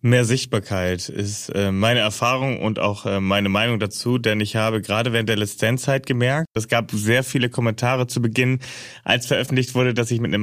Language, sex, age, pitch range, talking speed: German, male, 30-49, 105-125 Hz, 185 wpm